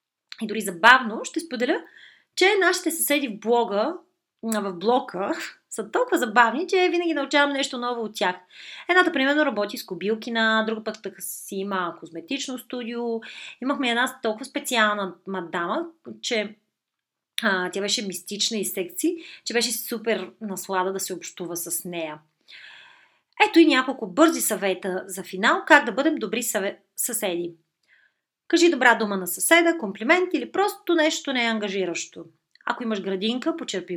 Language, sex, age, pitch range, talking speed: Bulgarian, female, 30-49, 190-275 Hz, 150 wpm